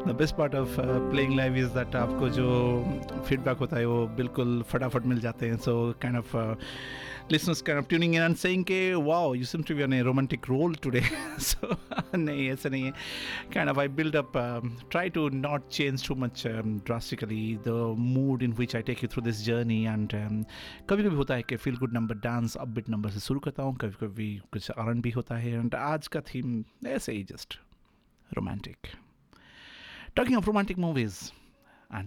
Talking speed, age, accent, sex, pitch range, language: 190 wpm, 50-69, native, male, 110-135 Hz, Hindi